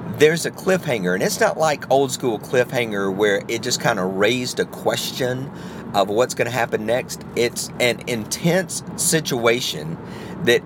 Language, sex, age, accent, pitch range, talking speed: English, male, 40-59, American, 115-155 Hz, 160 wpm